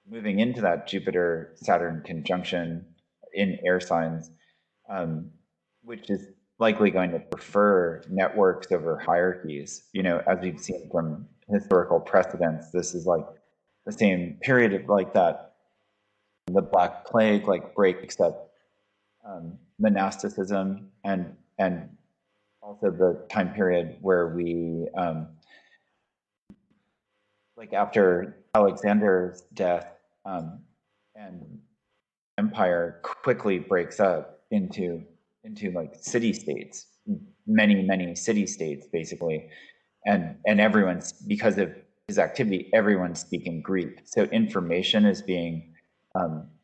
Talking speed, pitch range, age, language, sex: 110 wpm, 85-105 Hz, 30-49, English, male